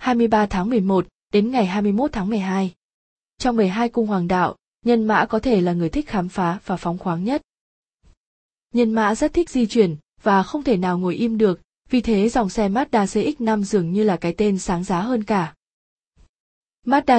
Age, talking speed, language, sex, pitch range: 20-39, 190 wpm, Vietnamese, female, 185-230 Hz